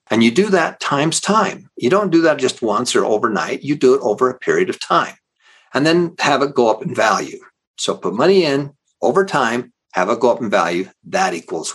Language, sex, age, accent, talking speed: English, male, 50-69, American, 225 wpm